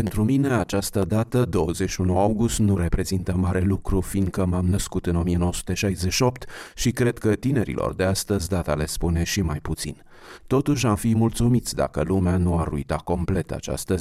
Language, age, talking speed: Romanian, 30-49, 165 wpm